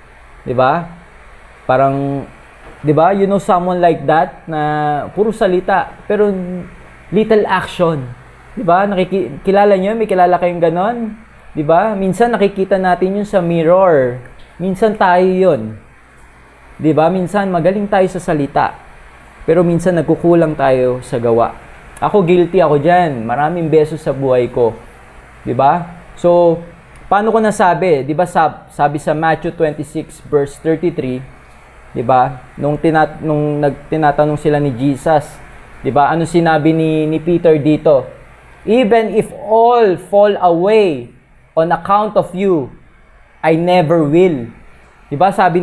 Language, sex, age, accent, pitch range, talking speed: Filipino, male, 20-39, native, 150-195 Hz, 130 wpm